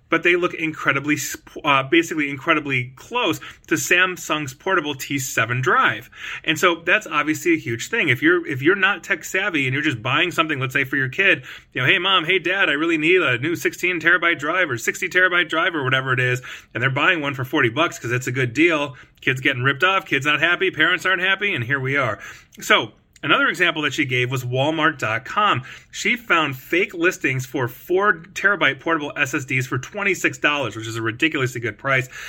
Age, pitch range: 30-49, 120-175 Hz